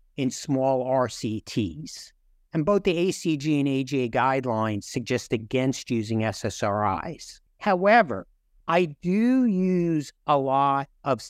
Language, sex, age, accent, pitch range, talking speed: English, male, 60-79, American, 120-165 Hz, 110 wpm